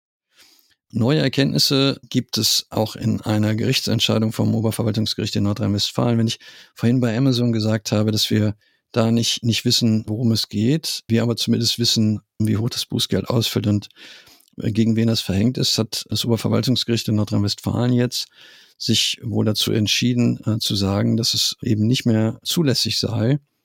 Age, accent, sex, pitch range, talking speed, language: 50-69, German, male, 105-120 Hz, 155 wpm, German